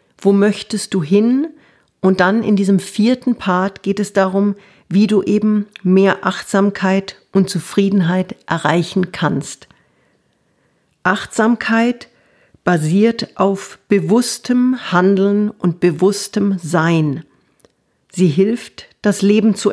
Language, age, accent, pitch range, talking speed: German, 50-69, German, 180-210 Hz, 105 wpm